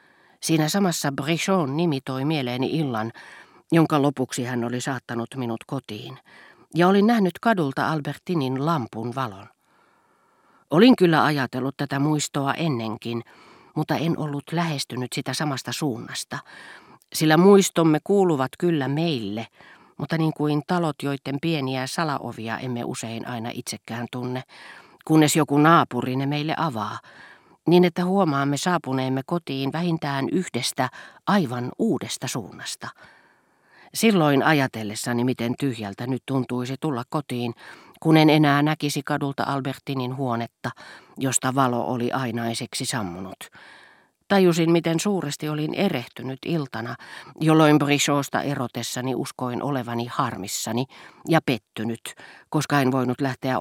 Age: 40-59